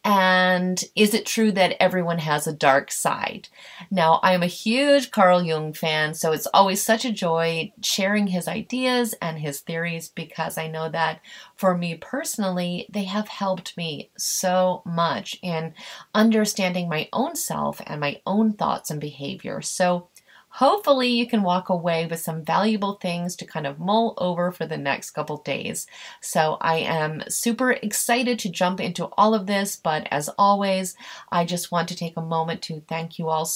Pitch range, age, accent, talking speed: 165-215 Hz, 30-49, American, 175 wpm